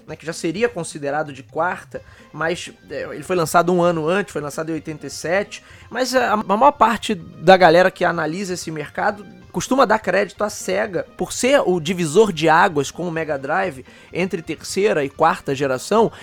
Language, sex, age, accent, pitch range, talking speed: Portuguese, male, 20-39, Brazilian, 165-210 Hz, 180 wpm